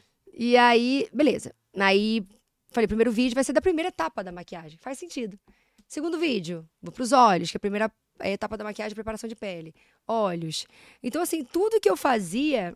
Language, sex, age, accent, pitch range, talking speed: Portuguese, female, 20-39, Brazilian, 200-265 Hz, 185 wpm